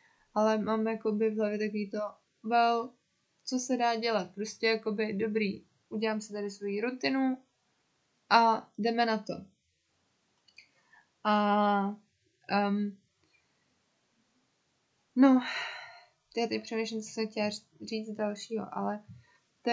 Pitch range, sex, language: 200-230 Hz, female, Czech